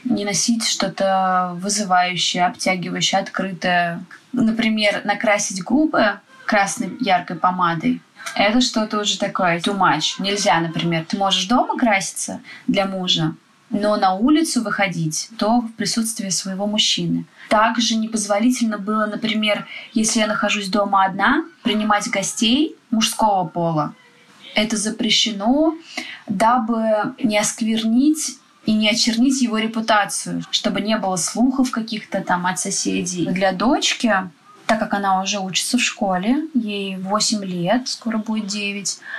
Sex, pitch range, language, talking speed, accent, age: female, 195-245 Hz, Russian, 125 wpm, native, 20-39